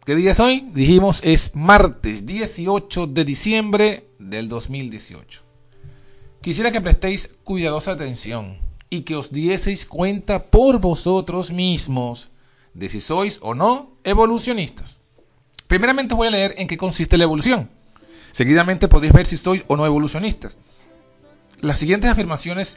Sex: male